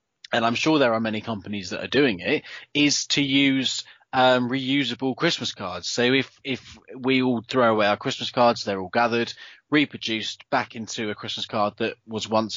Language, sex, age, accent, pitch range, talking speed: English, male, 20-39, British, 110-135 Hz, 190 wpm